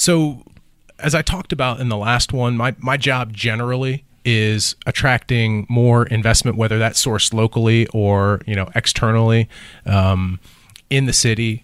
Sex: male